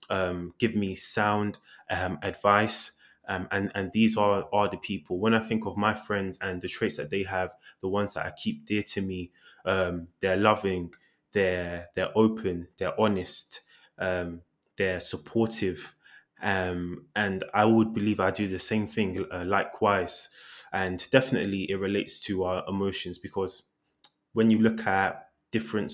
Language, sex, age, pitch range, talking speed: English, male, 20-39, 90-110 Hz, 160 wpm